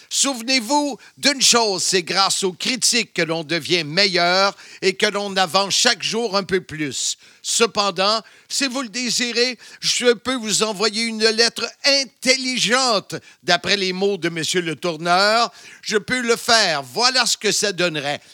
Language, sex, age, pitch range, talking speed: French, male, 50-69, 190-240 Hz, 155 wpm